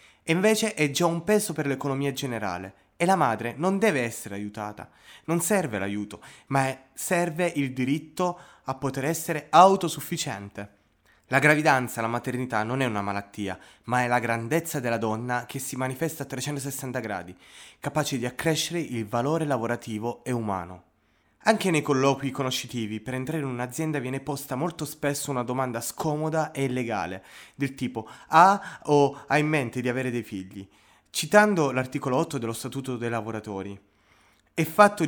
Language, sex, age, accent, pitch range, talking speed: Italian, male, 20-39, native, 115-160 Hz, 155 wpm